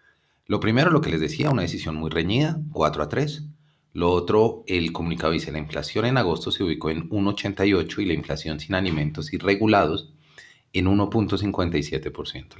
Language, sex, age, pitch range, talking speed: Spanish, male, 30-49, 80-105 Hz, 165 wpm